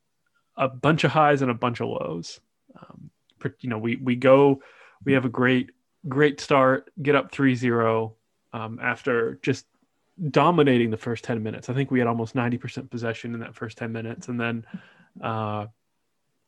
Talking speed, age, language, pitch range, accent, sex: 175 wpm, 20-39, English, 120-140 Hz, American, male